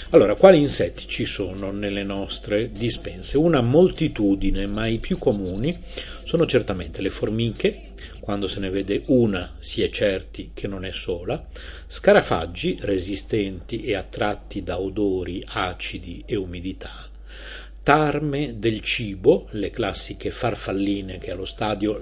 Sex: male